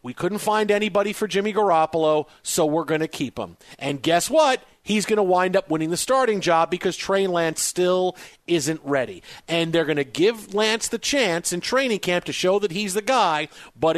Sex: male